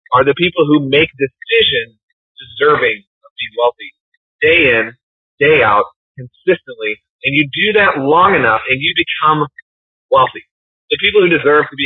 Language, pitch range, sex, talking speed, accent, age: English, 150-235 Hz, male, 155 wpm, American, 30-49